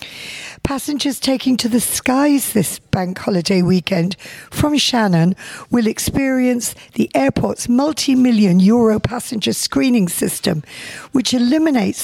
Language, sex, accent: English, female, British